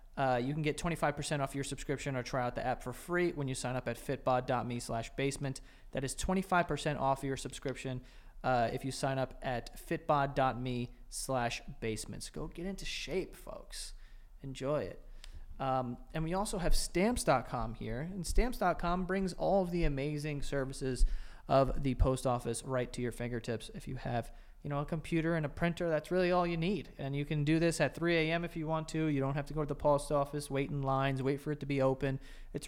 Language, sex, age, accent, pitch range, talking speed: English, male, 30-49, American, 125-155 Hz, 210 wpm